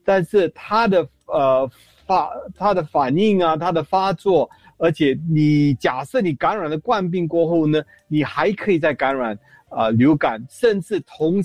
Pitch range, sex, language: 140-190 Hz, male, Chinese